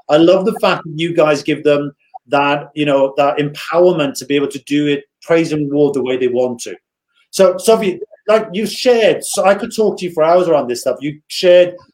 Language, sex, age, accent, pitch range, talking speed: English, male, 40-59, British, 150-190 Hz, 230 wpm